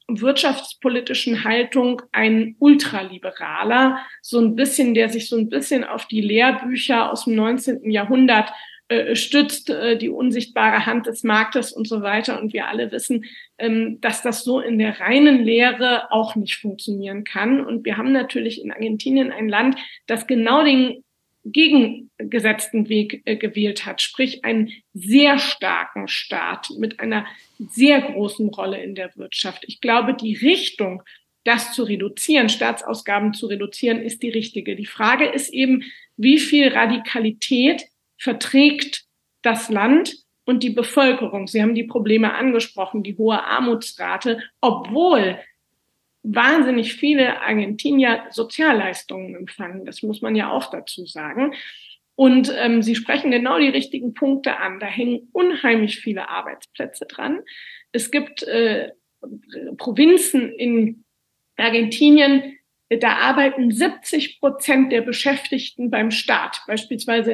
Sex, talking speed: female, 135 wpm